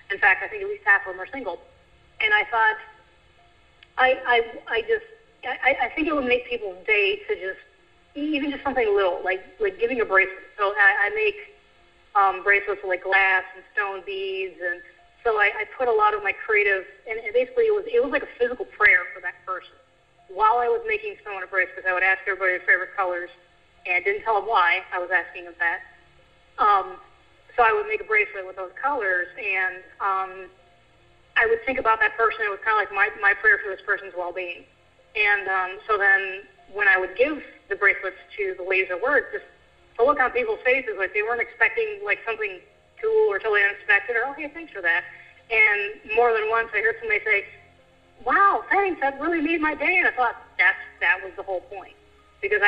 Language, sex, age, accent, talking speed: English, female, 30-49, American, 215 wpm